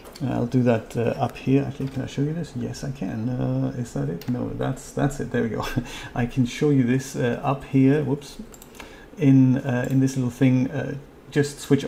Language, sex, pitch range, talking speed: English, male, 125-140 Hz, 220 wpm